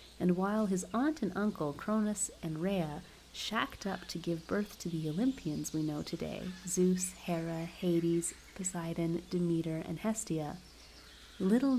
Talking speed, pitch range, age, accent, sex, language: 145 wpm, 160-190 Hz, 30-49, American, female, English